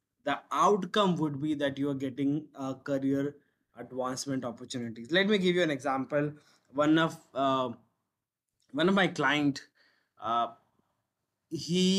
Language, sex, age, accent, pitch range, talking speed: English, male, 20-39, Indian, 140-175 Hz, 135 wpm